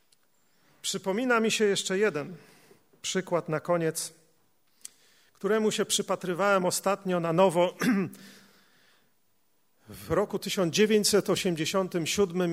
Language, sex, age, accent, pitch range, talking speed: Polish, male, 40-59, native, 155-200 Hz, 80 wpm